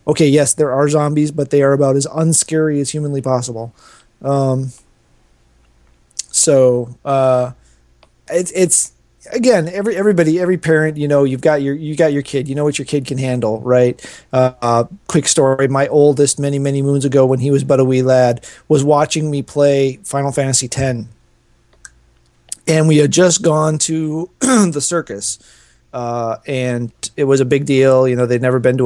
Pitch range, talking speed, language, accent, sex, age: 120-145 Hz, 180 wpm, English, American, male, 30-49